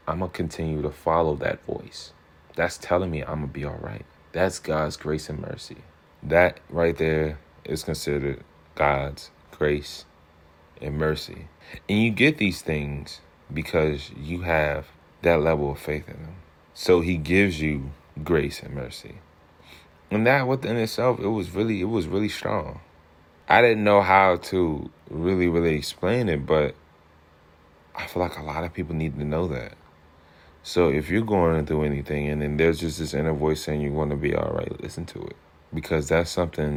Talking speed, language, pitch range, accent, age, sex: 175 wpm, English, 75-90 Hz, American, 30-49, male